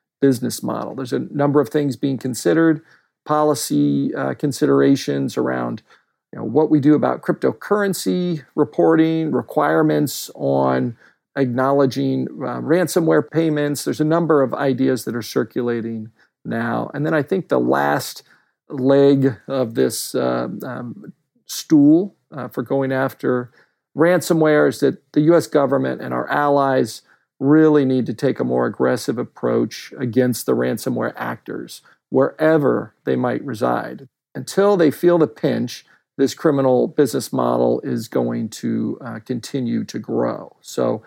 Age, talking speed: 50-69, 135 wpm